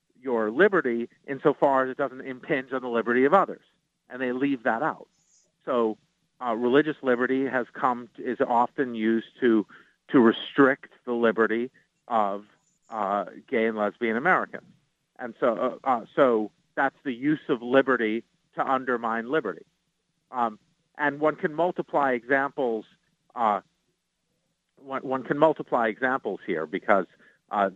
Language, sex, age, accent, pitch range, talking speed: English, male, 50-69, American, 115-140 Hz, 145 wpm